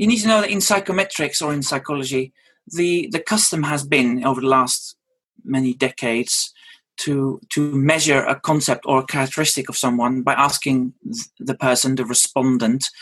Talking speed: 165 wpm